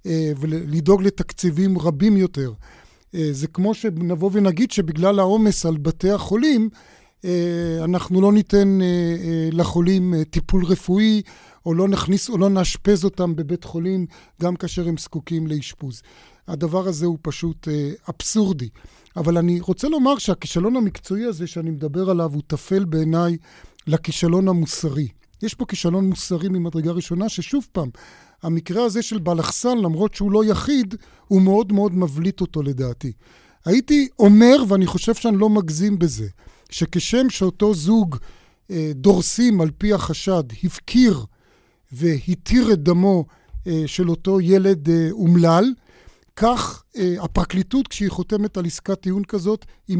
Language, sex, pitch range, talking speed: Hebrew, male, 165-200 Hz, 130 wpm